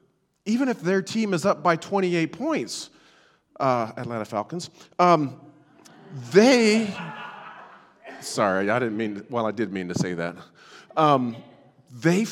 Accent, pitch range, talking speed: American, 115-170 Hz, 130 wpm